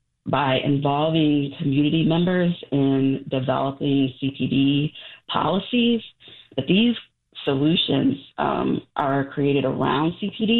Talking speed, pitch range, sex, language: 90 wpm, 140-170 Hz, female, English